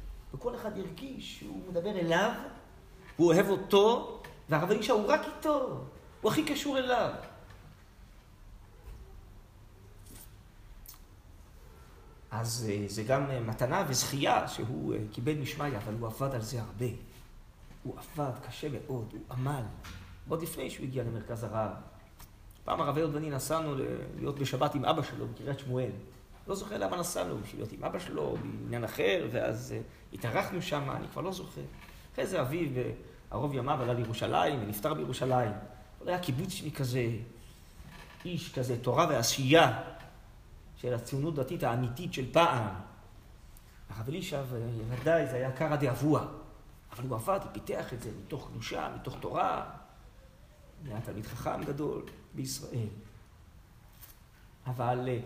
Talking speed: 130 wpm